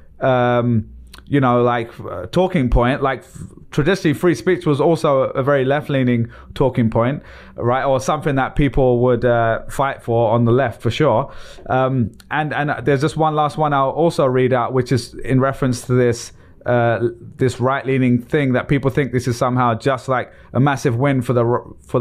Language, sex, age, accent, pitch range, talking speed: English, male, 20-39, British, 120-140 Hz, 185 wpm